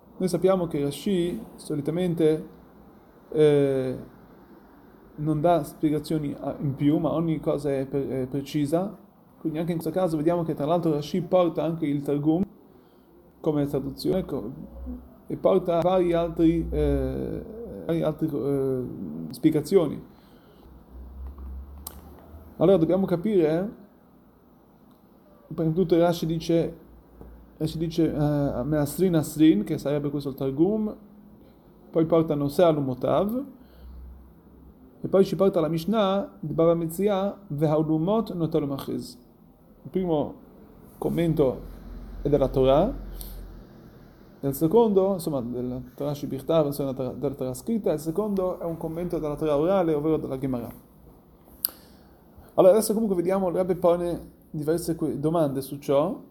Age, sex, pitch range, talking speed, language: 30-49, male, 140-175 Hz, 135 wpm, Italian